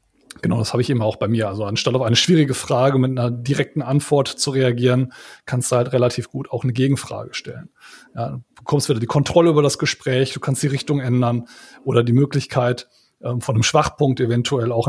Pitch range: 120-150 Hz